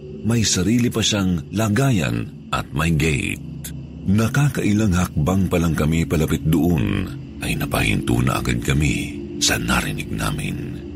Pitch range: 75-100 Hz